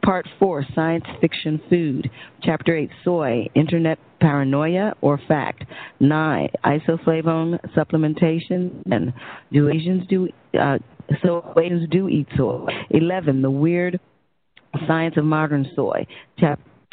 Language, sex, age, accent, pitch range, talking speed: English, female, 40-59, American, 145-170 Hz, 115 wpm